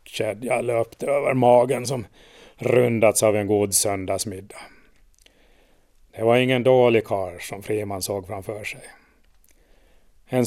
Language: Swedish